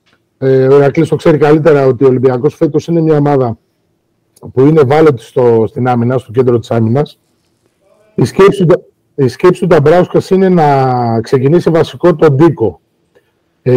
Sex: male